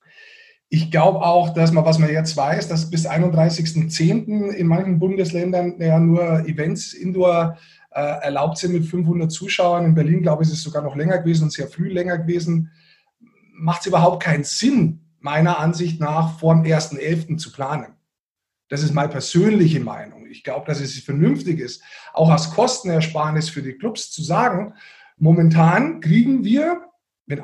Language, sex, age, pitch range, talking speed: German, male, 30-49, 160-185 Hz, 165 wpm